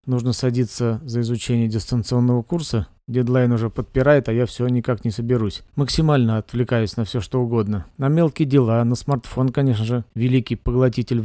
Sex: male